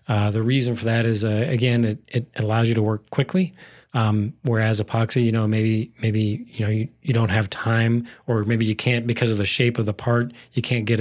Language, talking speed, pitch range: English, 235 wpm, 105-120 Hz